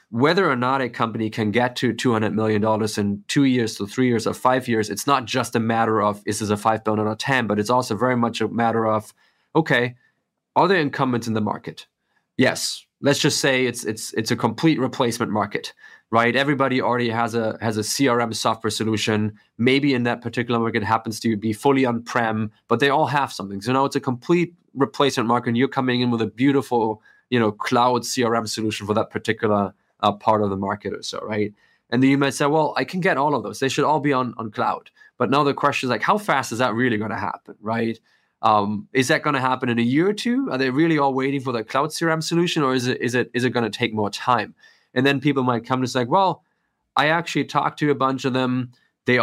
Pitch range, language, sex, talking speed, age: 110-135 Hz, English, male, 250 wpm, 20-39